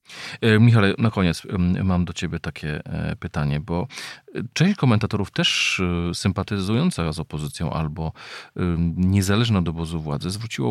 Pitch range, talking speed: 85-110 Hz, 120 wpm